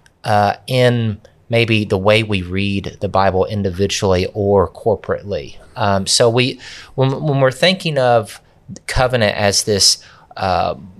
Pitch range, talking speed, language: 95-125 Hz, 130 wpm, English